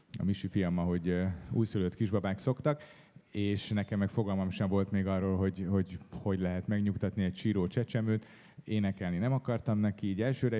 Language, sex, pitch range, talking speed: Hungarian, male, 95-110 Hz, 165 wpm